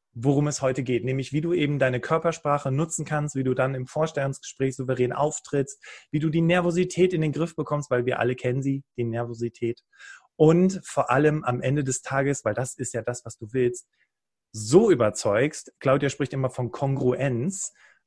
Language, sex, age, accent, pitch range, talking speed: German, male, 30-49, German, 125-165 Hz, 185 wpm